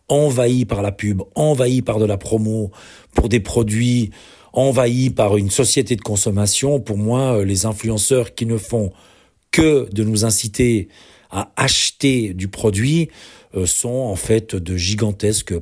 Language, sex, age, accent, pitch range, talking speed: French, male, 40-59, French, 100-120 Hz, 145 wpm